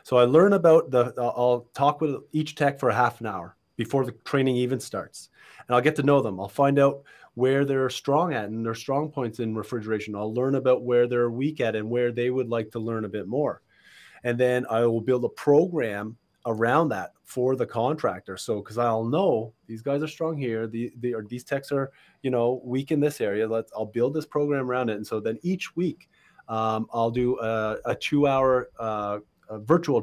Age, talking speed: 30-49, 220 wpm